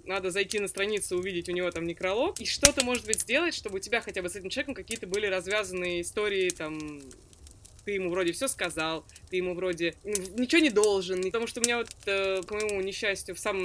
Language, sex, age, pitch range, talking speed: Russian, female, 20-39, 175-215 Hz, 210 wpm